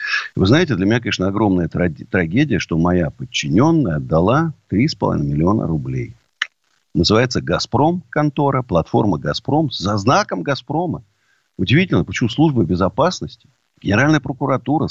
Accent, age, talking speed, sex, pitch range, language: native, 50-69, 110 wpm, male, 115-155 Hz, Russian